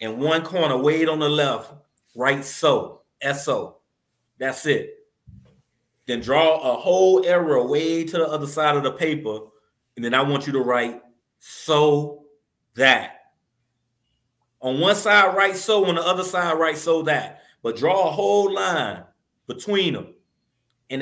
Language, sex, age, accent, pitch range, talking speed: English, male, 30-49, American, 145-230 Hz, 155 wpm